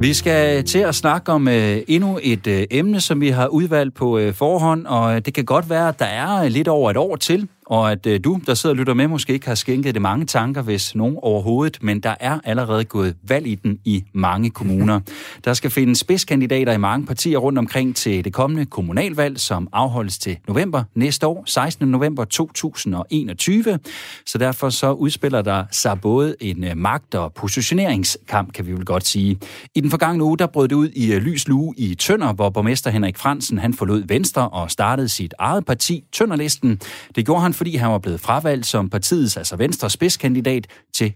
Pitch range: 105-145 Hz